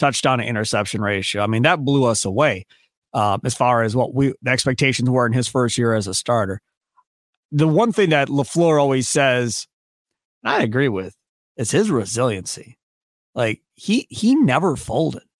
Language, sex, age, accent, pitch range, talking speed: English, male, 30-49, American, 130-185 Hz, 175 wpm